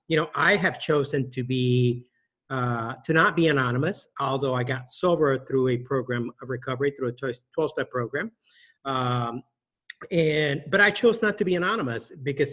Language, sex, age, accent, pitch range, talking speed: English, male, 50-69, American, 130-155 Hz, 170 wpm